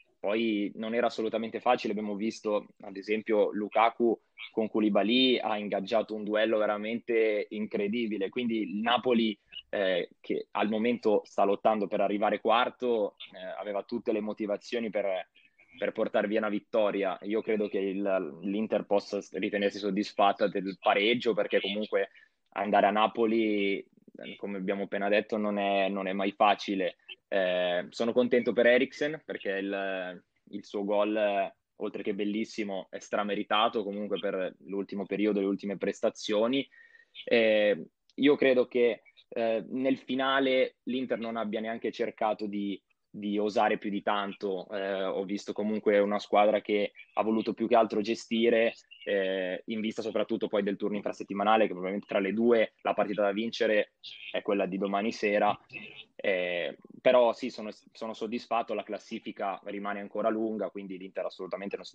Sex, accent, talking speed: male, native, 150 wpm